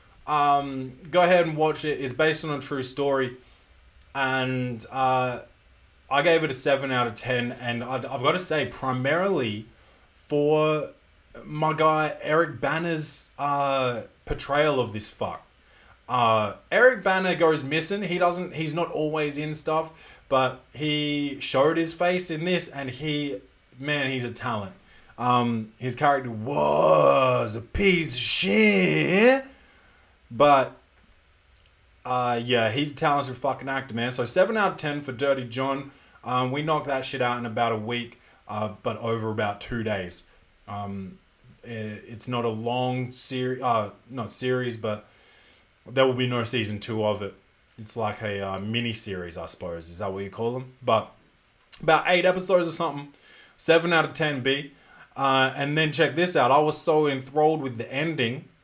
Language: English